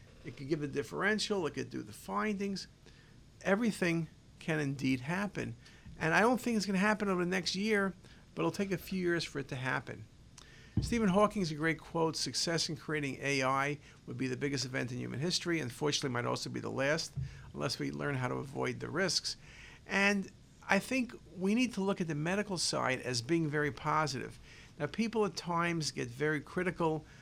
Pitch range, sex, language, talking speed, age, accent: 140-195 Hz, male, English, 195 wpm, 50-69, American